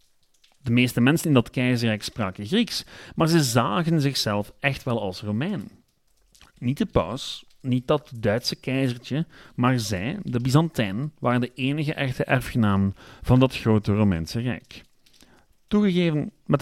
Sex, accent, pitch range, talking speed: male, Dutch, 110-145 Hz, 140 wpm